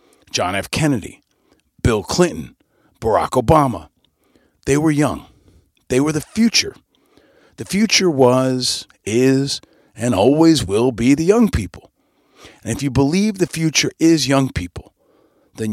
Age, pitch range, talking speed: 50-69, 100-140 Hz, 135 wpm